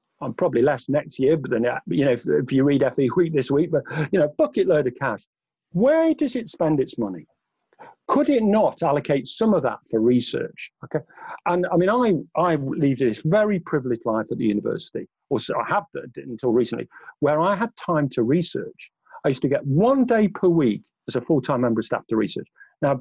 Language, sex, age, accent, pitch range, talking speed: English, male, 50-69, British, 130-180 Hz, 220 wpm